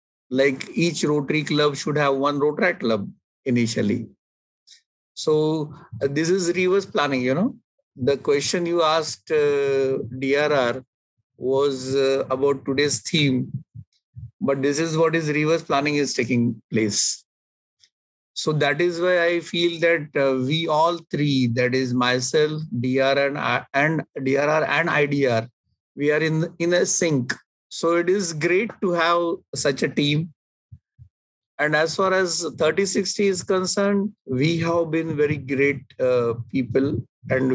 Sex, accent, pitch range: male, native, 130-165 Hz